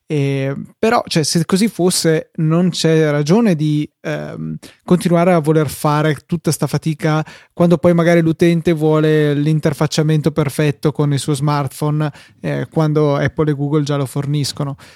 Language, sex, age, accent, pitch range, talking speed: Italian, male, 20-39, native, 145-165 Hz, 150 wpm